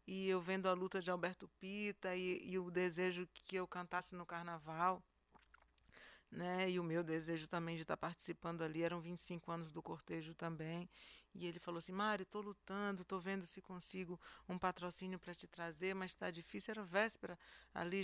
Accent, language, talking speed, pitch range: Brazilian, Portuguese, 185 wpm, 170-195 Hz